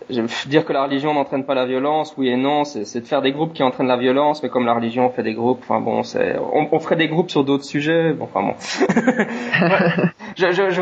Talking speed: 250 wpm